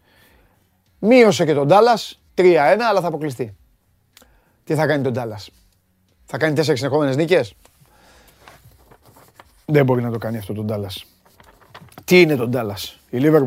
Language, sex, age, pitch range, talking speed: Greek, male, 30-49, 110-150 Hz, 145 wpm